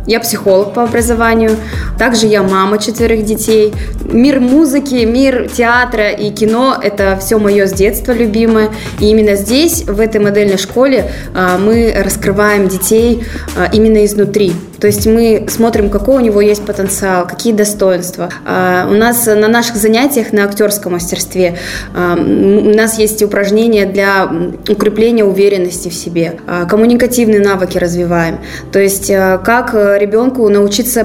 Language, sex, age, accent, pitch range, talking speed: Russian, female, 20-39, native, 195-225 Hz, 135 wpm